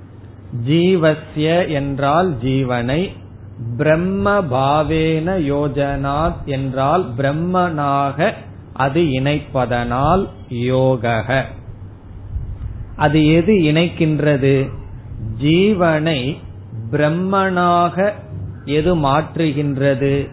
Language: Tamil